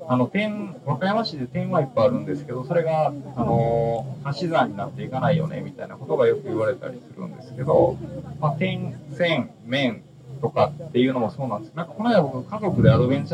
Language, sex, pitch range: Japanese, male, 125-175 Hz